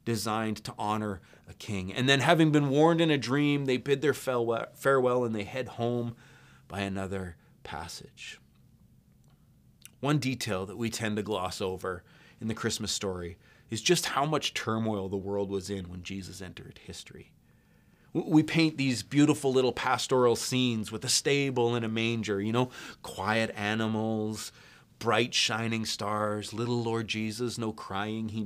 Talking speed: 160 wpm